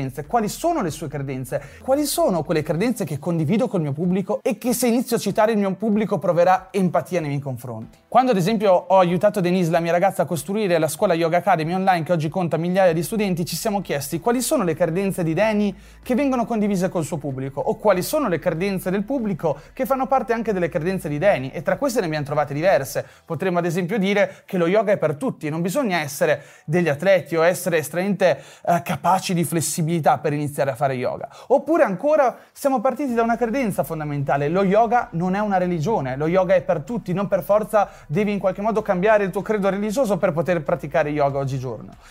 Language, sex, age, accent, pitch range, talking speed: Italian, male, 30-49, native, 170-220 Hz, 215 wpm